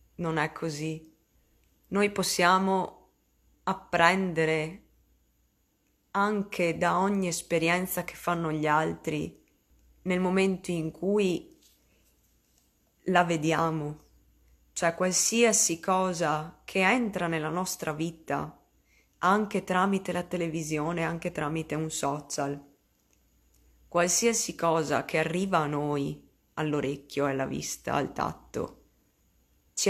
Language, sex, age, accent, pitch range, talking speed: Italian, female, 20-39, native, 145-175 Hz, 95 wpm